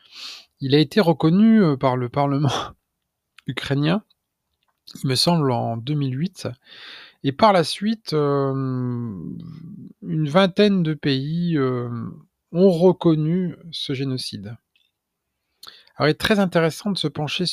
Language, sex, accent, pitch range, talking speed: French, male, French, 120-170 Hz, 120 wpm